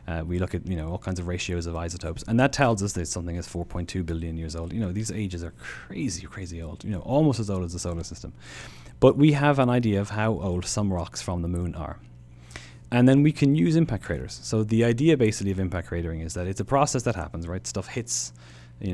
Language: English